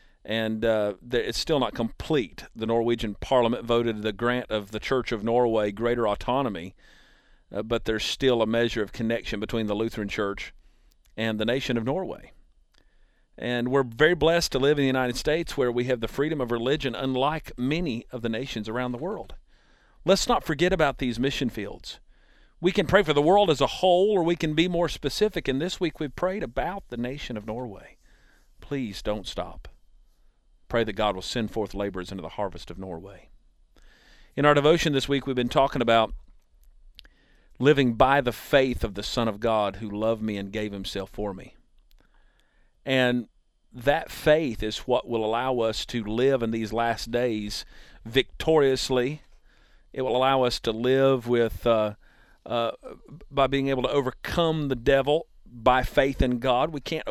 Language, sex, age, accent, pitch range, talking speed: English, male, 50-69, American, 110-135 Hz, 180 wpm